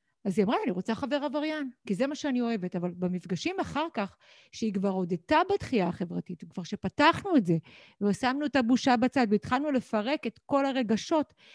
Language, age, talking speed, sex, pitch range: Hebrew, 50-69, 175 wpm, female, 210-275 Hz